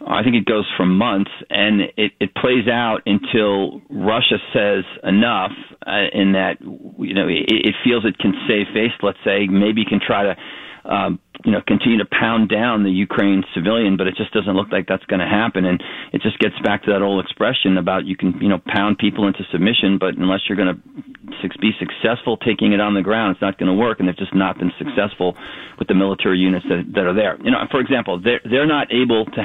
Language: English